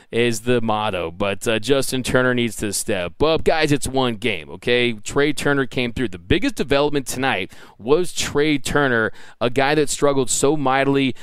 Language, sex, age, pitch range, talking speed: English, male, 20-39, 115-135 Hz, 175 wpm